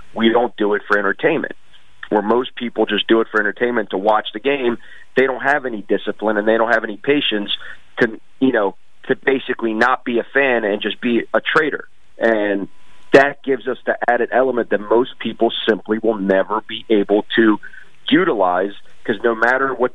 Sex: male